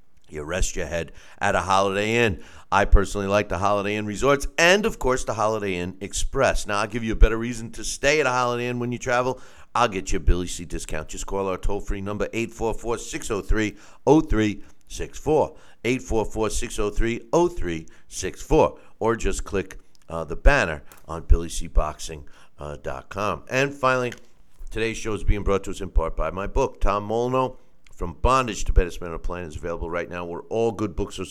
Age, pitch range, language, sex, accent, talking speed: 60-79, 90-115 Hz, English, male, American, 175 wpm